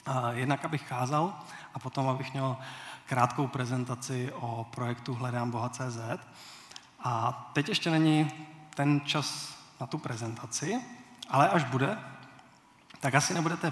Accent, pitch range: native, 130-150 Hz